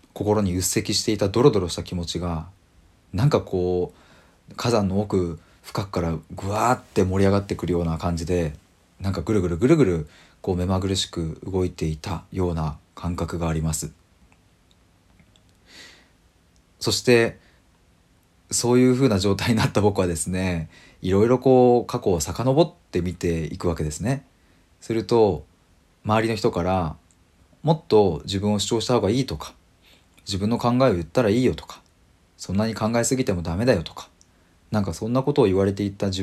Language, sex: Japanese, male